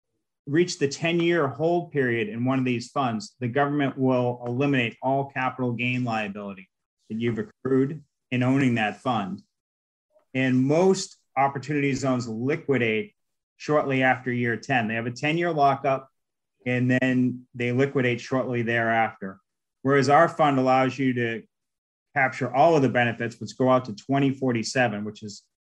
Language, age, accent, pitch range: English, 40-59, American, 120-140 Hz